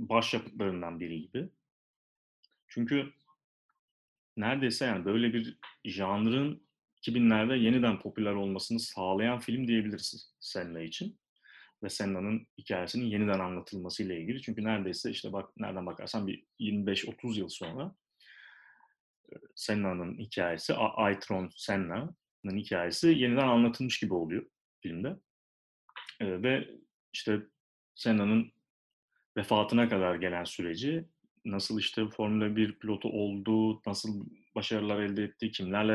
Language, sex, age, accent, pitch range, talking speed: Turkish, male, 30-49, native, 100-120 Hz, 105 wpm